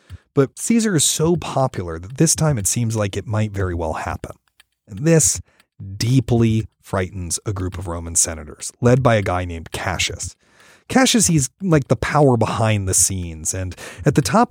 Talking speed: 175 wpm